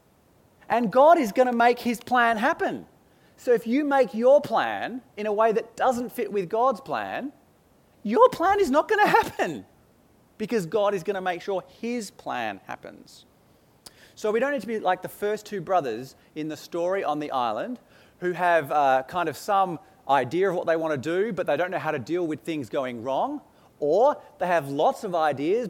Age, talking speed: 30-49, 205 wpm